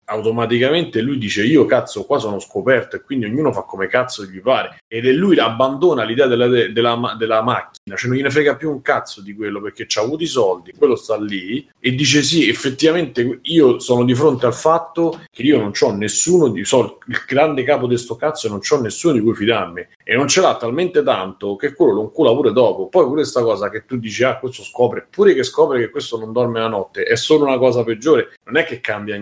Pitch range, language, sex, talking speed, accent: 110-135 Hz, Italian, male, 230 wpm, native